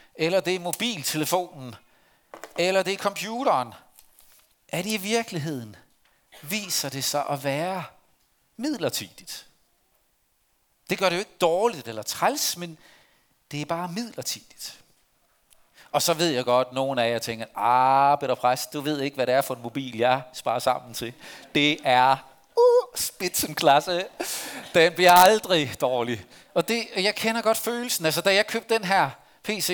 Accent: native